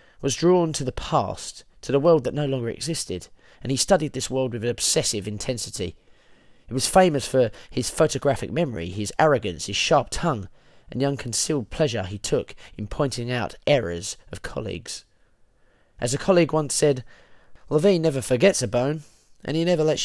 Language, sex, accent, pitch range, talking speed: English, male, British, 105-150 Hz, 175 wpm